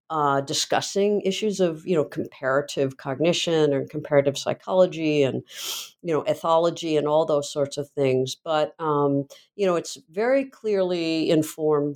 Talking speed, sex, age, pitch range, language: 145 wpm, female, 50-69, 140-180 Hz, English